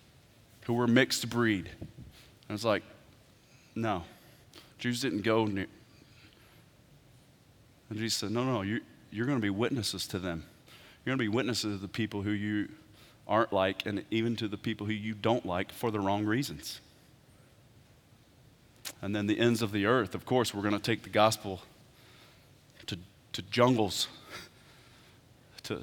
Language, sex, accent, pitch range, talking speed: English, male, American, 110-135 Hz, 160 wpm